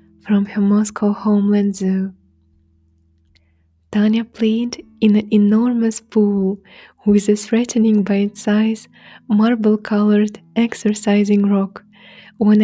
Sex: female